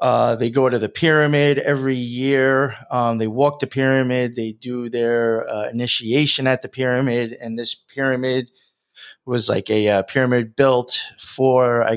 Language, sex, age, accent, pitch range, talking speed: English, male, 20-39, American, 110-130 Hz, 160 wpm